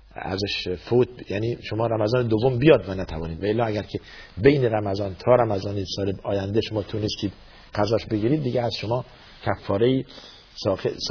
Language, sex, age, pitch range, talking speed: Persian, male, 50-69, 90-105 Hz, 160 wpm